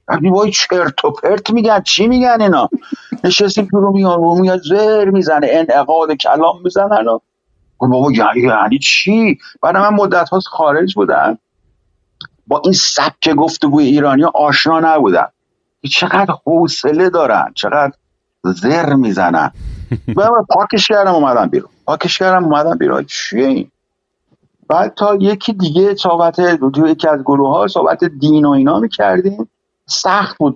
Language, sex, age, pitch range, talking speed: Persian, male, 50-69, 160-205 Hz, 130 wpm